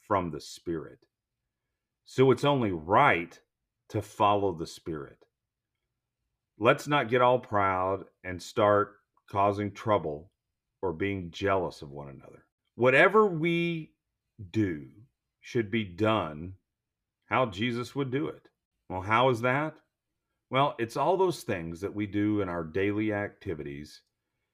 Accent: American